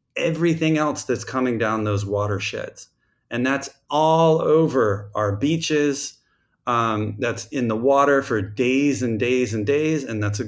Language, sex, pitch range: English, male, 105-140 Hz